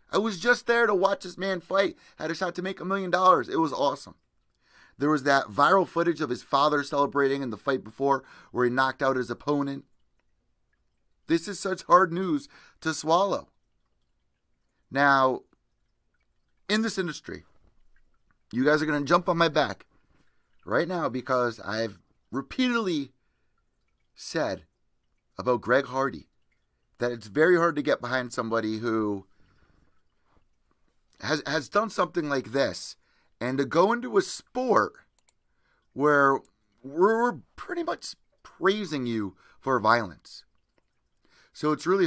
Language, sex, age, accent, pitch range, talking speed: English, male, 30-49, American, 125-180 Hz, 145 wpm